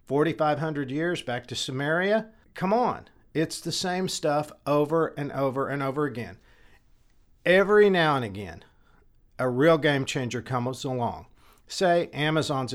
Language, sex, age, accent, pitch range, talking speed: English, male, 50-69, American, 110-155 Hz, 135 wpm